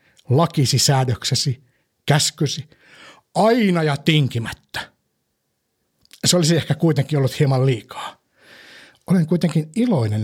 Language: Finnish